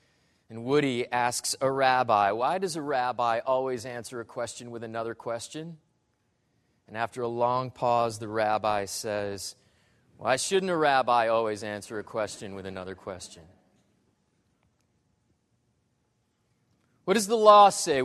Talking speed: 135 wpm